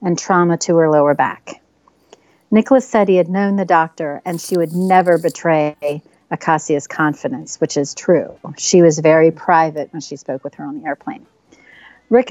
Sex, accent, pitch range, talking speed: female, American, 160-205 Hz, 175 wpm